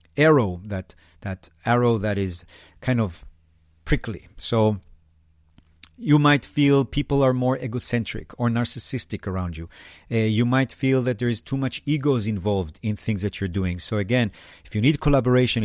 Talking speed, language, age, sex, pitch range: 165 wpm, English, 50-69, male, 100-135 Hz